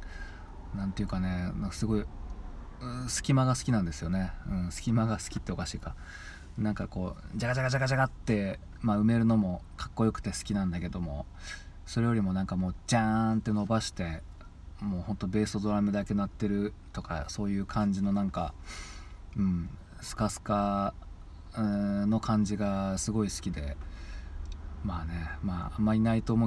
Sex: male